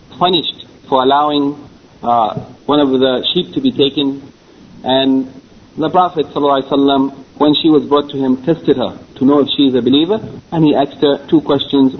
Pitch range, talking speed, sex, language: 140-160 Hz, 175 wpm, male, English